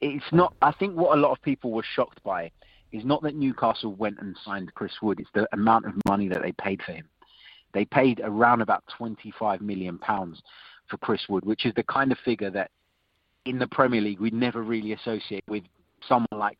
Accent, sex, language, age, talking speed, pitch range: British, male, English, 30-49, 215 wpm, 100-125 Hz